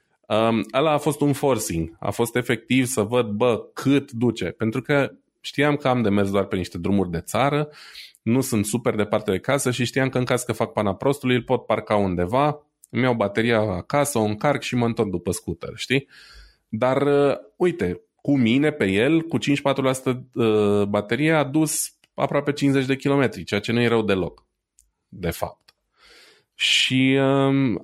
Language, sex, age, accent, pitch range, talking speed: Romanian, male, 20-39, native, 100-135 Hz, 185 wpm